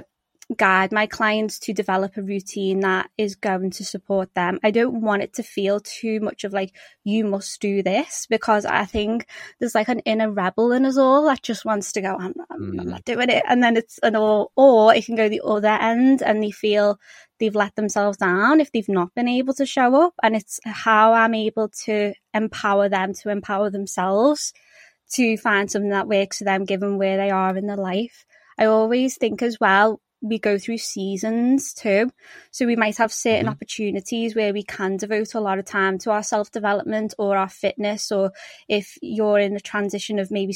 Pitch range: 200-225 Hz